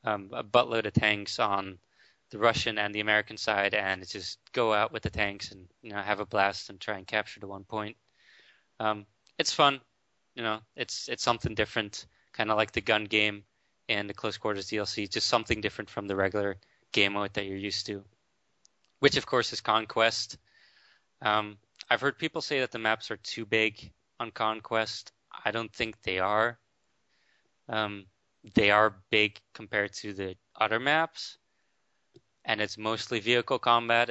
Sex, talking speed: male, 180 wpm